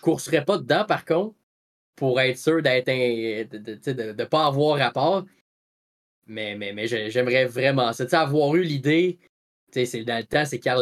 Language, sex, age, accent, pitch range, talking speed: French, male, 20-39, Canadian, 120-155 Hz, 185 wpm